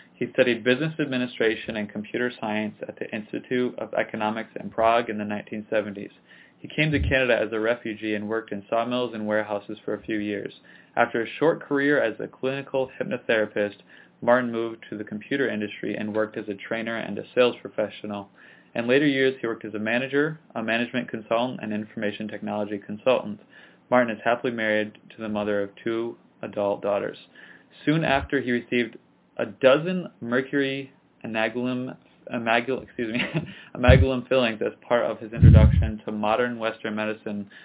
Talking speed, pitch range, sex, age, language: 165 wpm, 105-125 Hz, male, 20-39, English